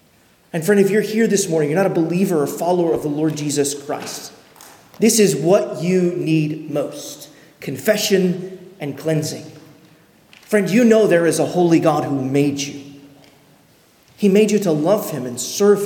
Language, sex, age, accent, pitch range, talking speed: English, male, 30-49, American, 155-205 Hz, 175 wpm